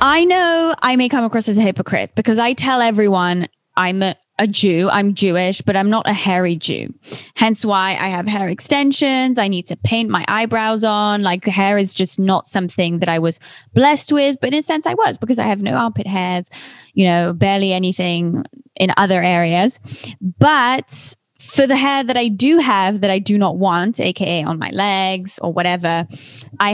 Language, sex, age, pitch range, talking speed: English, female, 10-29, 185-225 Hz, 200 wpm